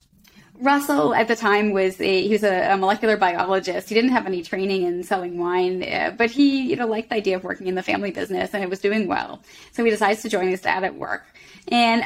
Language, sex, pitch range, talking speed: English, female, 185-225 Hz, 235 wpm